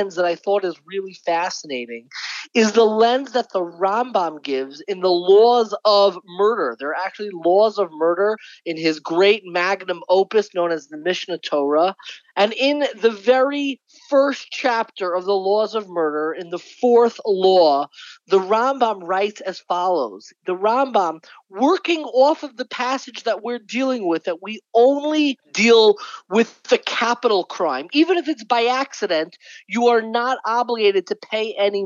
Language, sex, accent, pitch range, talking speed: English, male, American, 200-265 Hz, 160 wpm